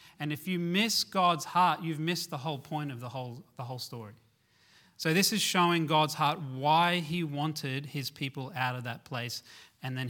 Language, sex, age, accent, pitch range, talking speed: English, male, 30-49, Australian, 135-165 Hz, 200 wpm